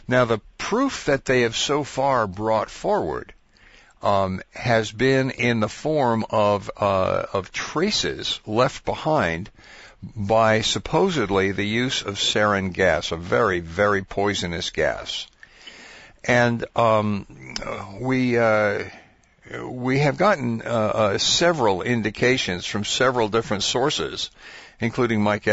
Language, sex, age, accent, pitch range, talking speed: English, male, 60-79, American, 100-125 Hz, 120 wpm